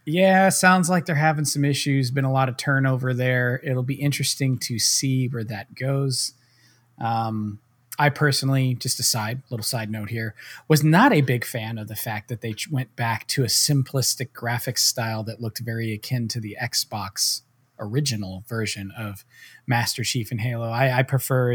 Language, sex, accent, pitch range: English, male, American, 115-140 Hz